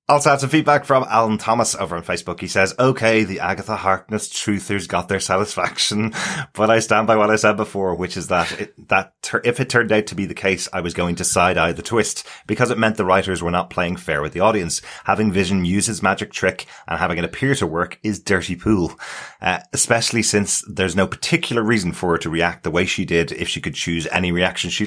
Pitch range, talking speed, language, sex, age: 85-110 Hz, 230 wpm, English, male, 30-49